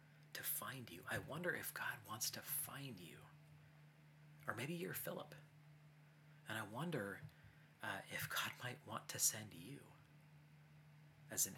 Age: 30-49